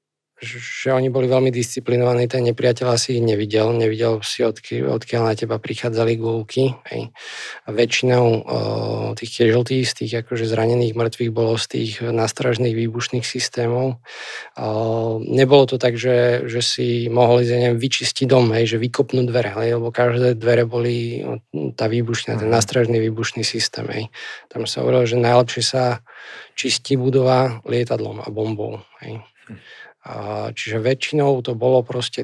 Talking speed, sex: 140 wpm, male